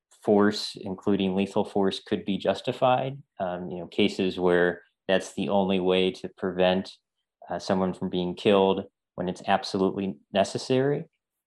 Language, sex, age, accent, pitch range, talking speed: English, male, 30-49, American, 95-115 Hz, 140 wpm